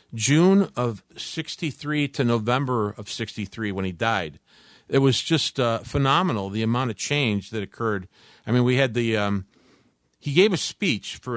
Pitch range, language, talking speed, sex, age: 110-150 Hz, English, 170 wpm, male, 50-69